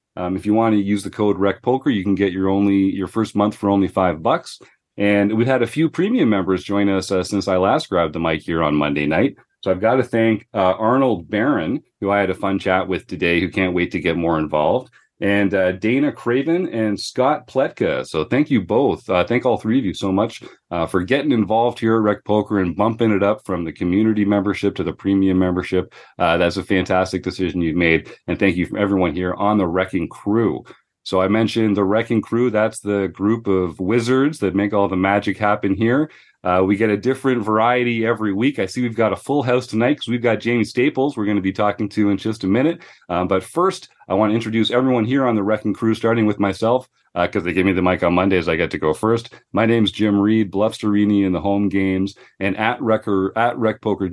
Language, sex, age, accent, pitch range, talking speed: English, male, 40-59, American, 95-110 Hz, 235 wpm